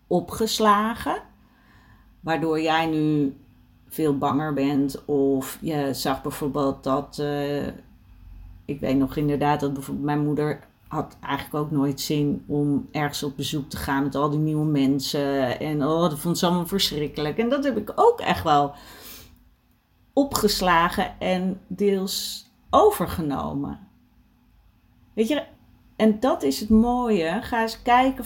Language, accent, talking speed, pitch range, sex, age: Dutch, Dutch, 140 wpm, 145-205 Hz, female, 40-59